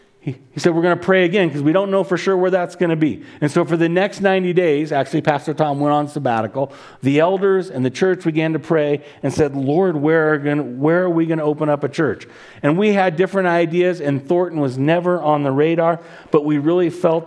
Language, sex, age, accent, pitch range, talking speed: English, male, 40-59, American, 145-180 Hz, 235 wpm